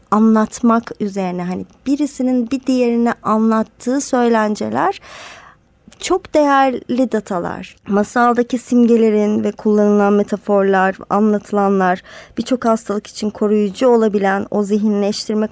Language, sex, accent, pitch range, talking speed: Turkish, male, native, 210-255 Hz, 95 wpm